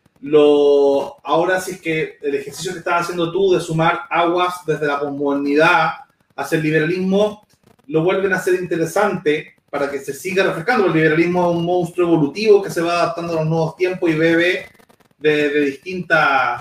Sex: male